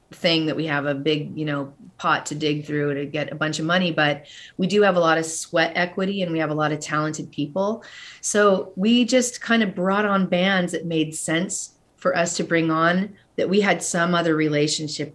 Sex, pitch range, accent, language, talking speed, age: female, 155-175 Hz, American, English, 225 wpm, 30-49